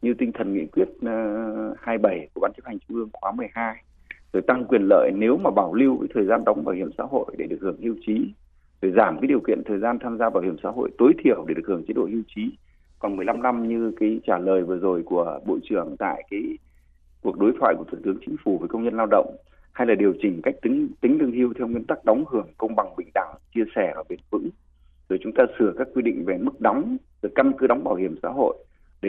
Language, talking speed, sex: Vietnamese, 260 wpm, male